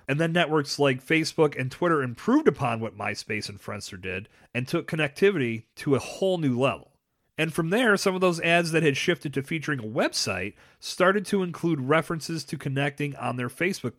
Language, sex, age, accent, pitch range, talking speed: English, male, 30-49, American, 125-170 Hz, 195 wpm